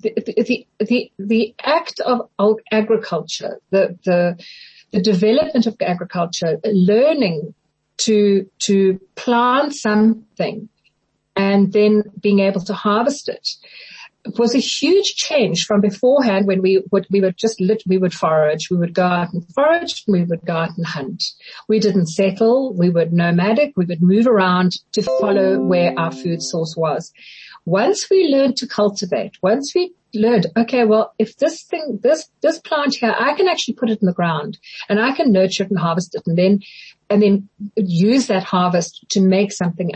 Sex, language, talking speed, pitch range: female, English, 175 wpm, 185-225 Hz